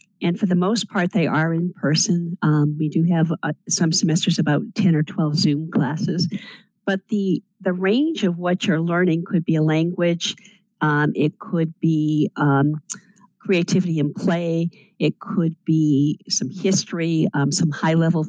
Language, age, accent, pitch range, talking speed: English, 50-69, American, 160-200 Hz, 165 wpm